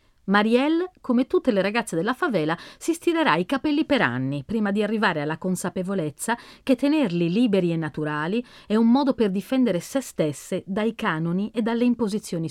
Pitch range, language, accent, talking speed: 170-270 Hz, Italian, native, 170 wpm